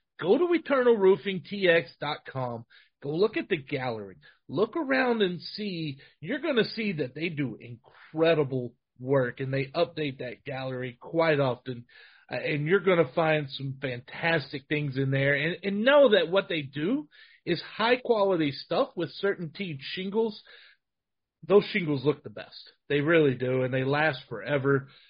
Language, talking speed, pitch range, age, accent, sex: English, 155 wpm, 140-185 Hz, 40-59, American, male